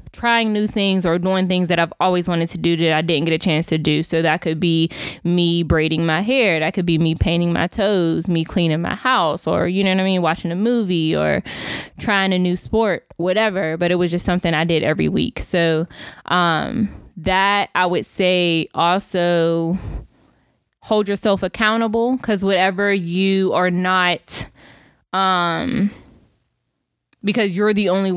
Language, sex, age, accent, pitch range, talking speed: English, female, 20-39, American, 170-200 Hz, 175 wpm